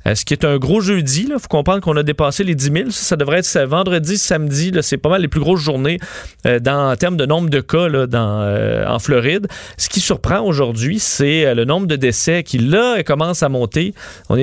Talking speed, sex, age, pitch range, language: 245 wpm, male, 30-49, 130-175 Hz, French